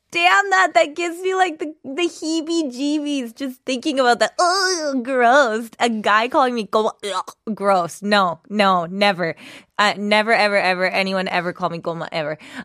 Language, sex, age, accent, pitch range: Korean, female, 20-39, American, 175-255 Hz